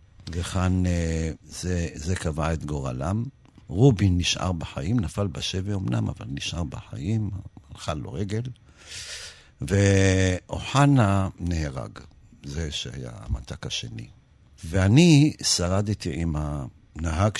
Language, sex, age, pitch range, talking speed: Hebrew, male, 60-79, 80-105 Hz, 95 wpm